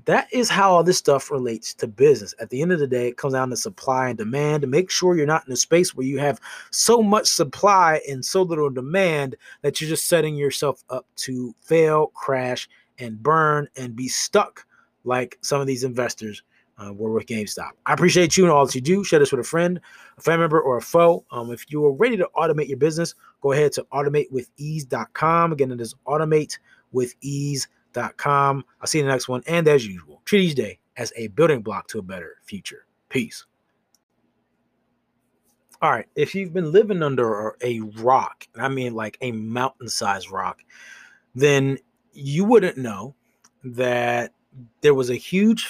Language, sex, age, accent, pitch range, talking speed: English, male, 20-39, American, 125-165 Hz, 190 wpm